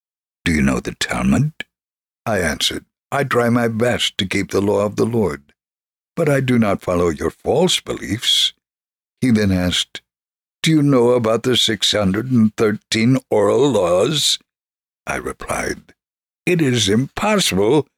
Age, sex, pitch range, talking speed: 60-79, male, 100-135 Hz, 140 wpm